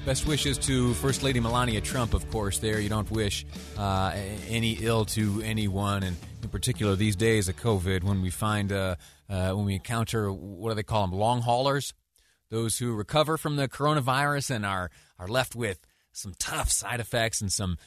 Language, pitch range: English, 95-120 Hz